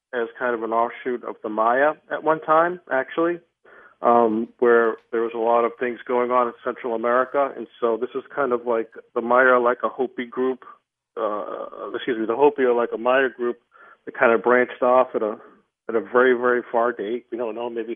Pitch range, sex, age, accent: 115-125 Hz, male, 40-59, American